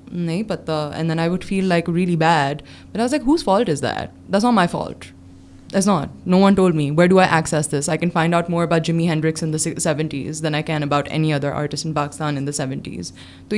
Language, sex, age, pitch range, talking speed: Urdu, female, 20-39, 155-180 Hz, 250 wpm